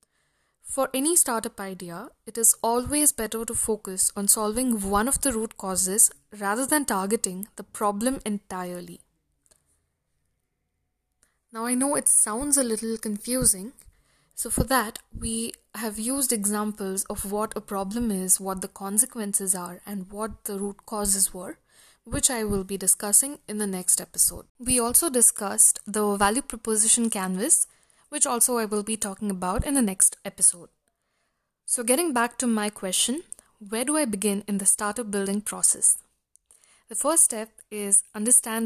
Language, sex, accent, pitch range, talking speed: English, female, Indian, 200-245 Hz, 155 wpm